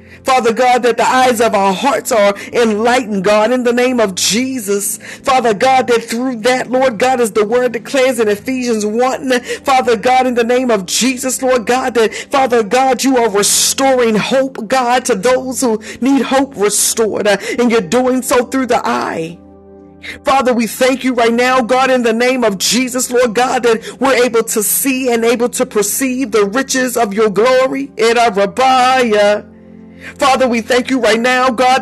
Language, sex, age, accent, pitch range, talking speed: English, female, 40-59, American, 230-260 Hz, 185 wpm